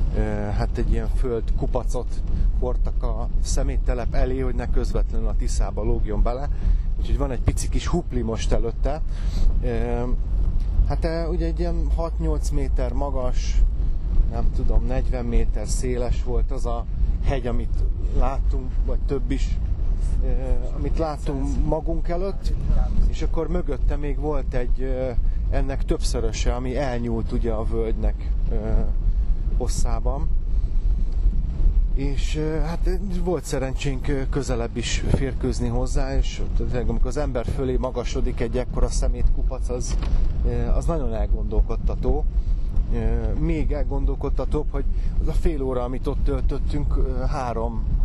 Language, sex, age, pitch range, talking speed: Hungarian, male, 30-49, 85-130 Hz, 120 wpm